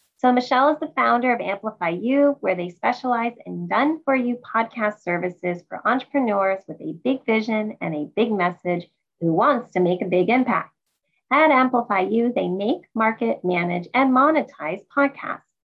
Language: English